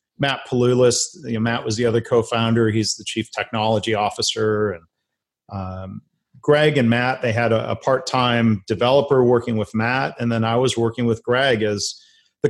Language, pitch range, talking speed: English, 110-130 Hz, 180 wpm